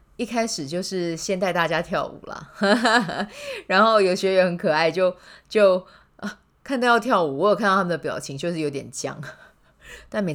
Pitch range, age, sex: 150-190 Hz, 20-39, female